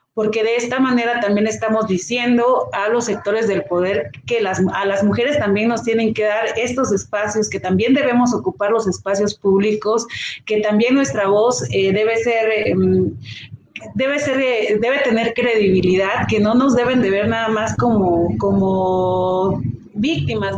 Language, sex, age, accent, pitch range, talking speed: Spanish, female, 40-59, Mexican, 195-240 Hz, 155 wpm